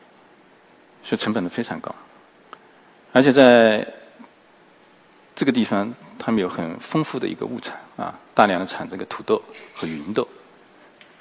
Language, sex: Chinese, male